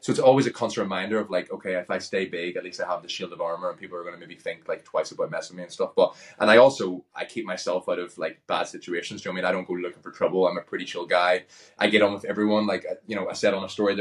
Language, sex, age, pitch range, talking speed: English, male, 20-39, 90-105 Hz, 340 wpm